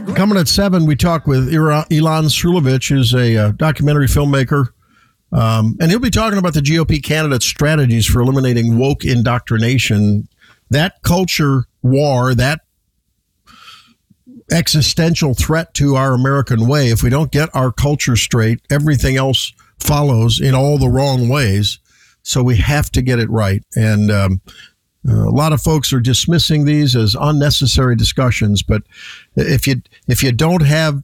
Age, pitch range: 50-69, 120-145 Hz